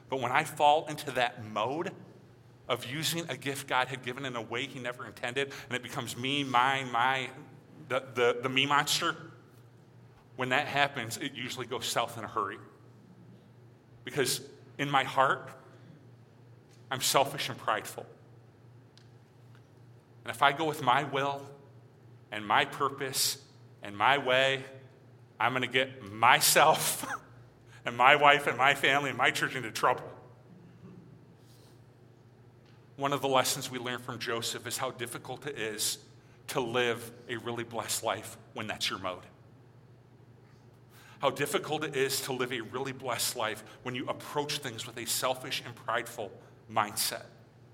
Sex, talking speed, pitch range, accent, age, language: male, 155 wpm, 120-135 Hz, American, 40-59, English